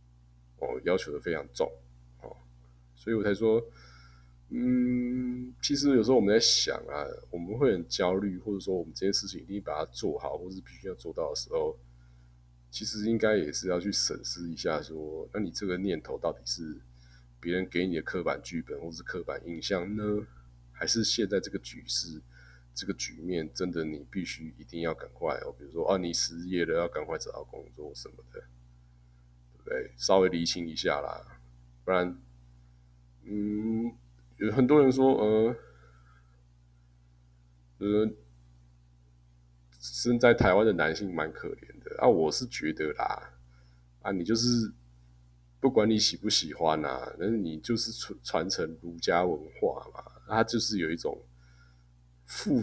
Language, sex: Chinese, male